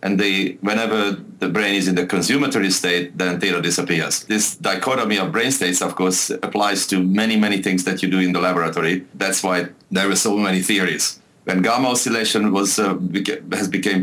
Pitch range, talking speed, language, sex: 90-100 Hz, 195 wpm, English, male